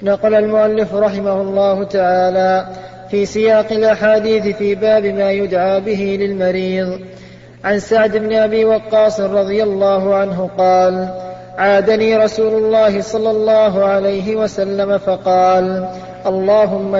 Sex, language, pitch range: male, Arabic, 190-215 Hz